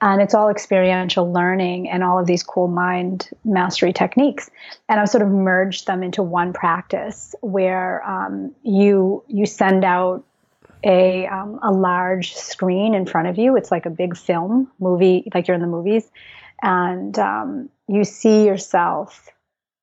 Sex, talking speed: female, 155 wpm